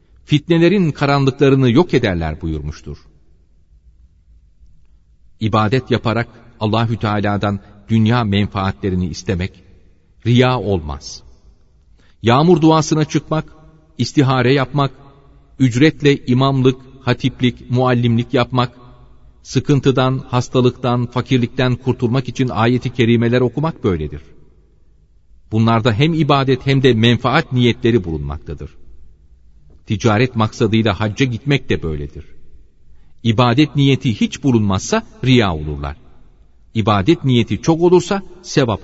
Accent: native